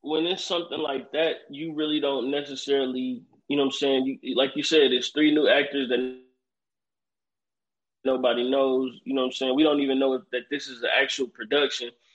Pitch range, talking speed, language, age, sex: 135-165 Hz, 200 wpm, English, 20-39, male